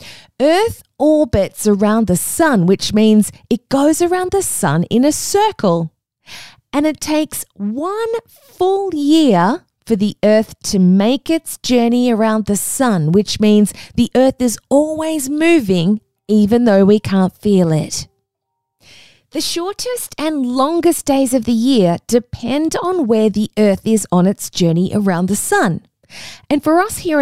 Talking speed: 150 wpm